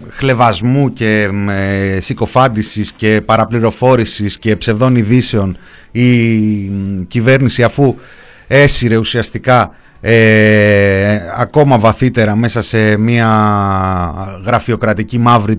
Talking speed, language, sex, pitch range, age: 80 wpm, Greek, male, 100-120 Hz, 30-49